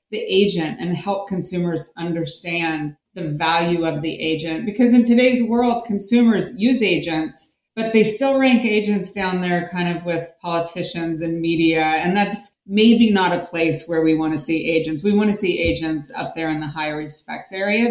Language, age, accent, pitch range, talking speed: English, 30-49, American, 165-205 Hz, 185 wpm